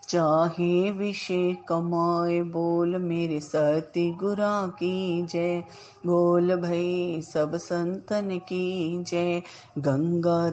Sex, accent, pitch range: female, native, 160-185 Hz